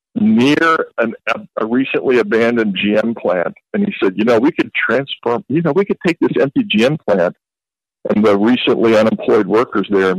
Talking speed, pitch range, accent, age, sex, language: 185 wpm, 115-175 Hz, American, 50-69, male, English